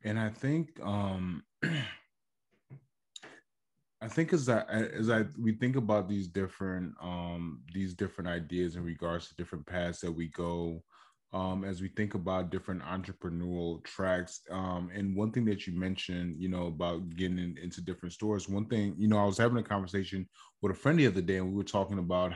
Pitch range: 90-105 Hz